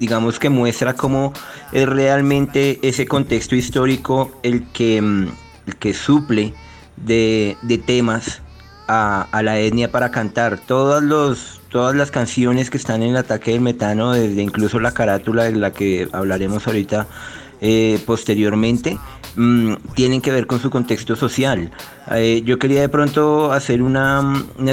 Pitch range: 110-130 Hz